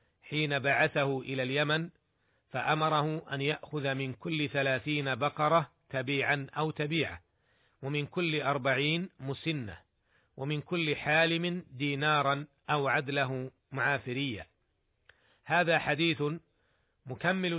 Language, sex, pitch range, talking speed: Arabic, male, 130-155 Hz, 100 wpm